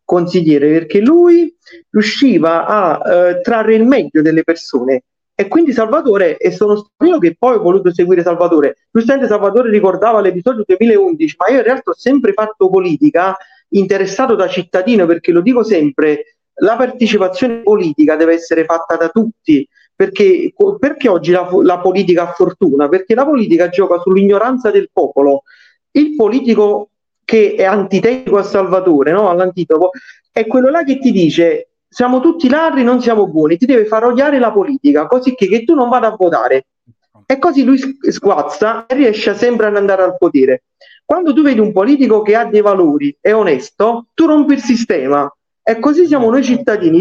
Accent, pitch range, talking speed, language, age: native, 180-270 Hz, 170 wpm, Italian, 40-59